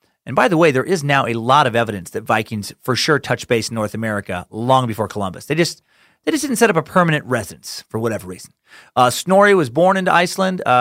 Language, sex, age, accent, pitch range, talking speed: English, male, 30-49, American, 125-180 Hz, 235 wpm